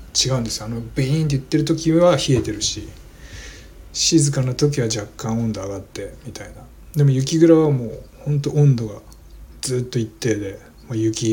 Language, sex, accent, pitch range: Japanese, male, native, 80-125 Hz